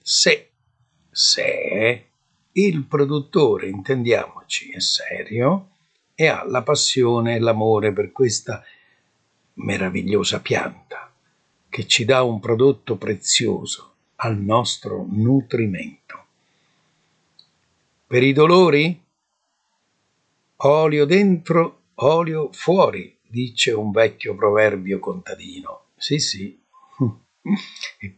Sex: male